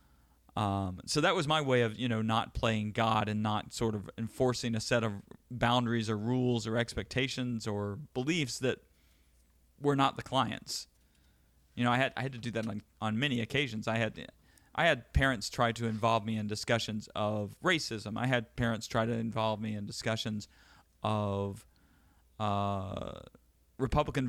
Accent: American